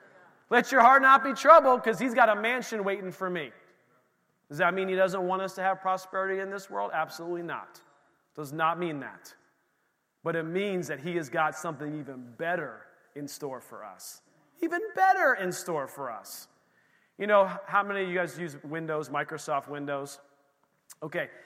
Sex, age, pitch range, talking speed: male, 30-49, 160-210 Hz, 180 wpm